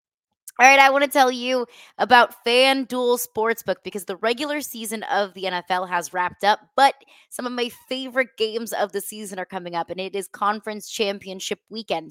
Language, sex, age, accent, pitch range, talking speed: English, female, 20-39, American, 185-240 Hz, 190 wpm